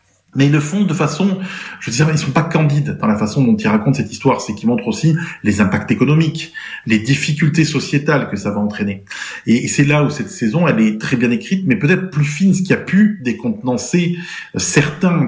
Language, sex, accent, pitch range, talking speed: French, male, French, 115-175 Hz, 220 wpm